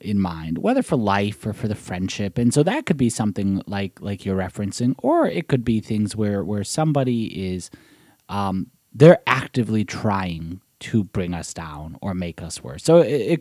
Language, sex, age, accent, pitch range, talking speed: English, male, 30-49, American, 95-125 Hz, 195 wpm